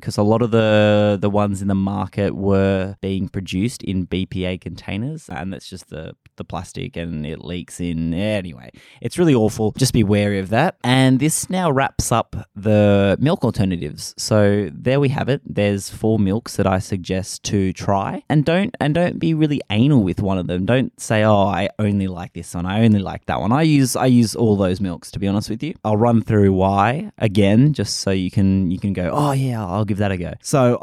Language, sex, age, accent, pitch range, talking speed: English, male, 20-39, Australian, 95-120 Hz, 220 wpm